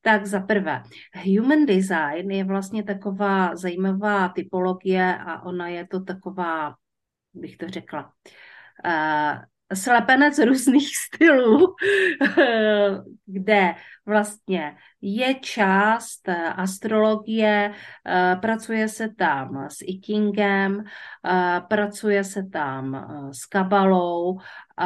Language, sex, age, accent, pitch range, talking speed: Czech, female, 40-59, native, 175-210 Hz, 85 wpm